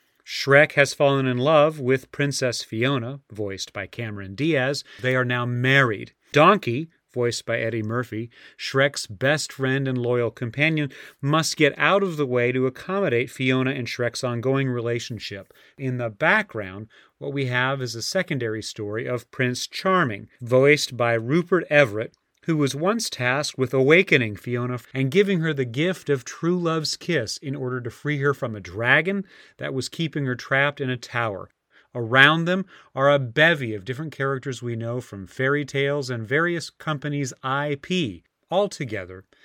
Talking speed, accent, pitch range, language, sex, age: 165 wpm, American, 120-150 Hz, English, male, 40-59